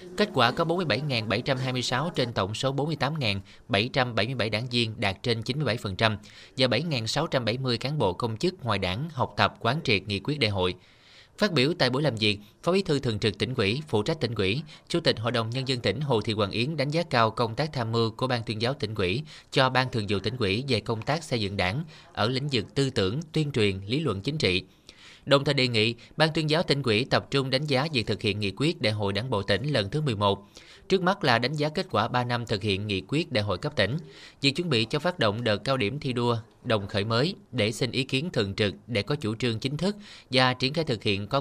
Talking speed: 245 wpm